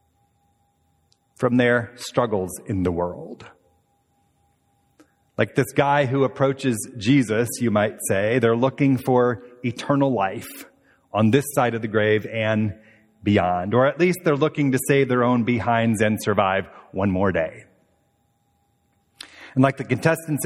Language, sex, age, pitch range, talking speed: English, male, 30-49, 105-140 Hz, 140 wpm